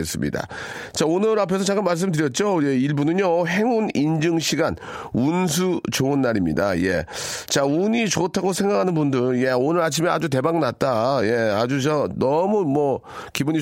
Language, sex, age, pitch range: Korean, male, 40-59, 130-160 Hz